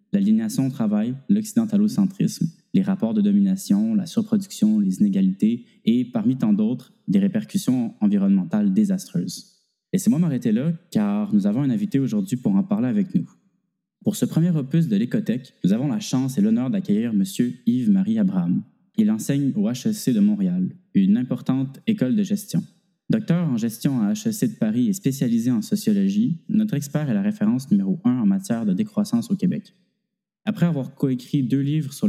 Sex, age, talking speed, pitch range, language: male, 20-39, 170 wpm, 190-220 Hz, French